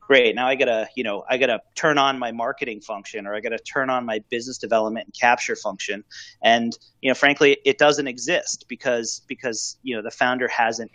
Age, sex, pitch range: 30-49, male, 115-140 Hz